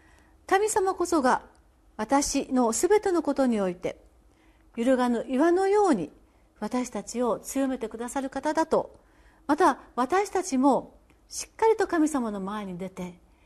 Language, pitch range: Japanese, 210-330 Hz